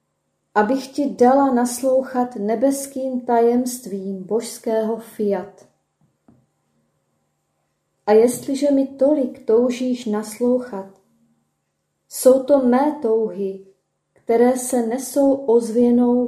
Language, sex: Czech, female